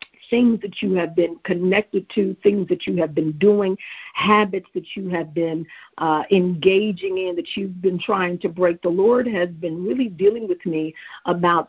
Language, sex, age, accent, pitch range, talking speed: English, female, 50-69, American, 175-200 Hz, 185 wpm